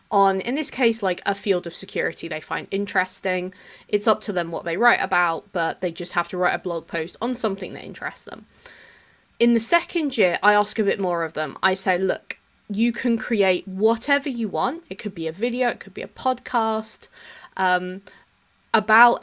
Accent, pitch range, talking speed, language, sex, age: British, 185-235 Hz, 205 wpm, English, female, 20-39